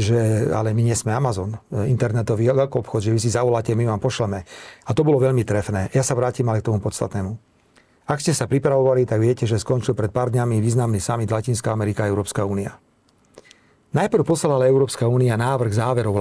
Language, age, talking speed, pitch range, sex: Slovak, 40-59, 190 wpm, 110-130 Hz, male